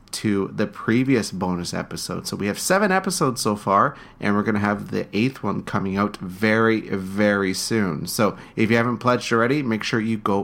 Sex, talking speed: male, 195 wpm